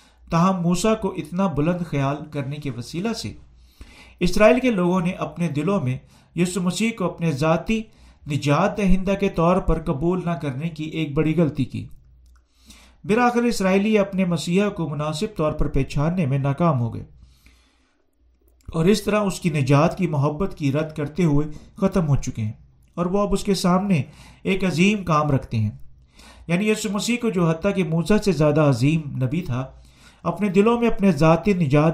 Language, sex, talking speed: Urdu, male, 175 wpm